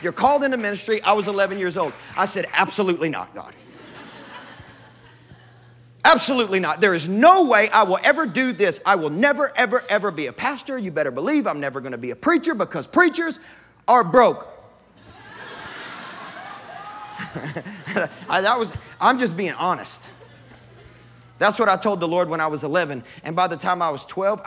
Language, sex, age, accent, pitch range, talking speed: English, male, 40-59, American, 150-205 Hz, 175 wpm